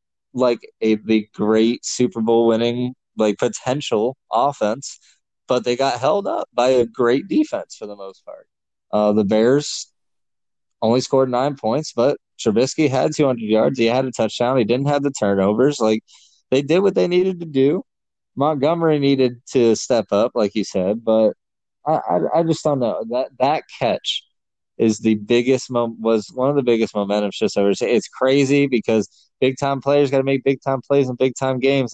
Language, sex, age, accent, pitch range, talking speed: English, male, 20-39, American, 105-135 Hz, 185 wpm